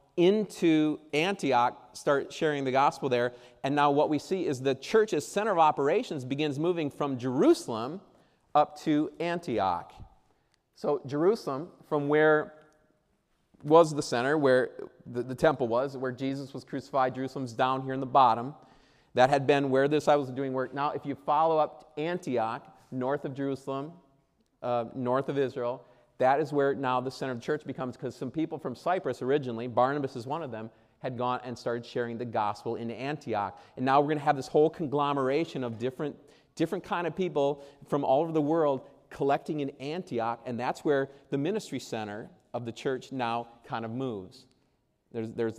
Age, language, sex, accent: 40-59, English, male, American